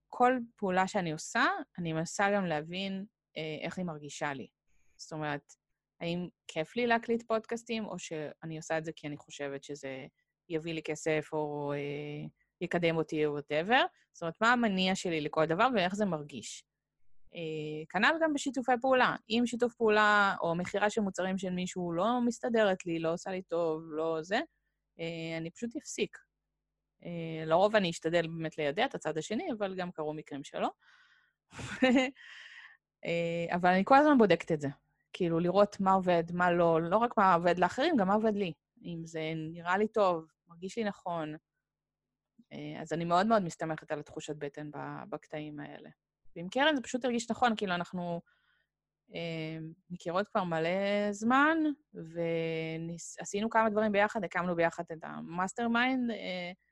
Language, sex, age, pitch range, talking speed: Hebrew, female, 20-39, 160-220 Hz, 160 wpm